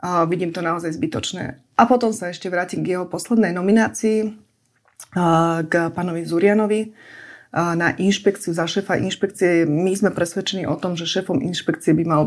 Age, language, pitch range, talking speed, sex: 30-49, Slovak, 165-195 Hz, 155 wpm, female